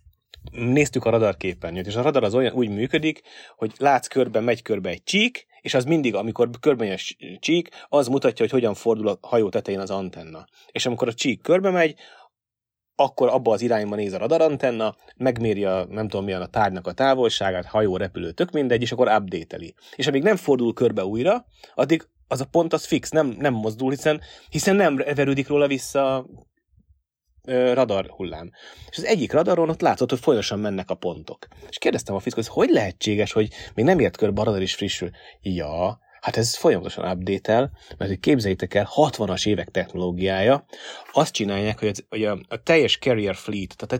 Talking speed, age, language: 185 wpm, 30-49, Hungarian